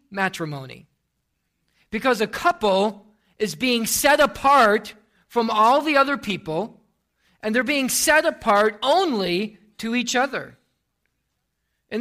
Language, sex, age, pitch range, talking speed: English, male, 40-59, 200-275 Hz, 115 wpm